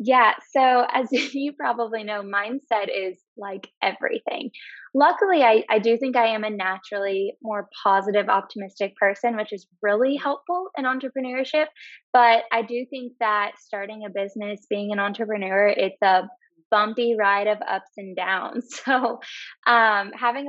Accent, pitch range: American, 200-255 Hz